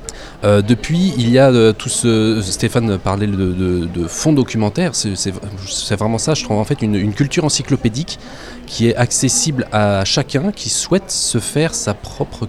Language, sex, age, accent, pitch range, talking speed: French, male, 20-39, French, 100-135 Hz, 175 wpm